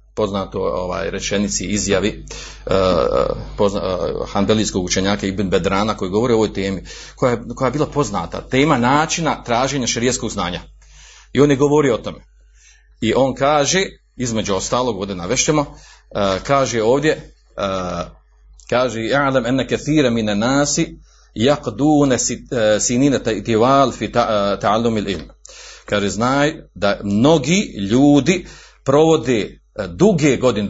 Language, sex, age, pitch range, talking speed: Croatian, male, 40-59, 110-150 Hz, 110 wpm